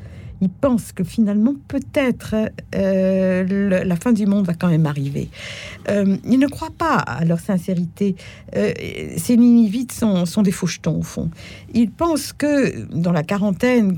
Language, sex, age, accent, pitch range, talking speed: French, female, 60-79, French, 170-230 Hz, 160 wpm